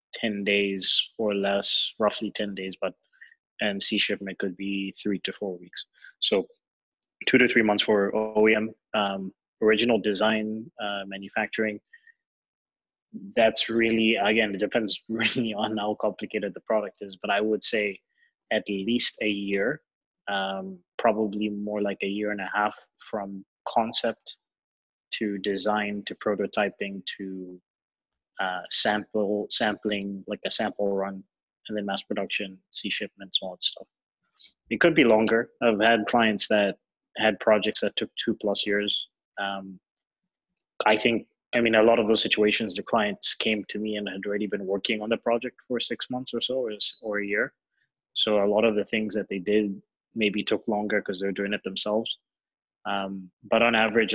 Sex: male